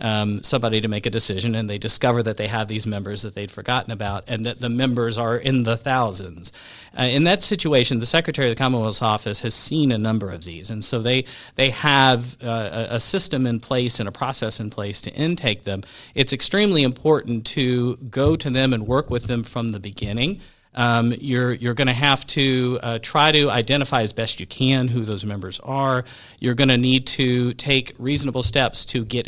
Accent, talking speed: American, 210 wpm